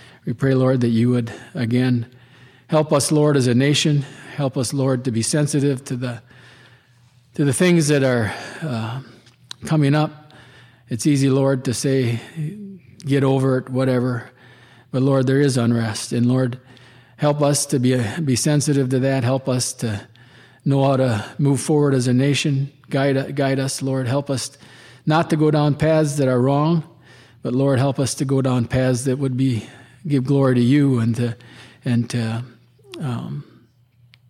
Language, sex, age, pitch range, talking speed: English, male, 40-59, 120-140 Hz, 175 wpm